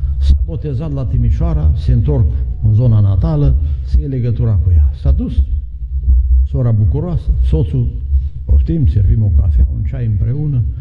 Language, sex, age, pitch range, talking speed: Romanian, male, 60-79, 70-105 Hz, 140 wpm